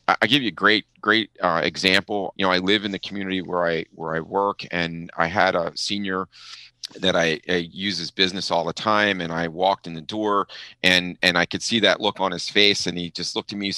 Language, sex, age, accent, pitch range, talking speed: English, male, 30-49, American, 85-105 Hz, 250 wpm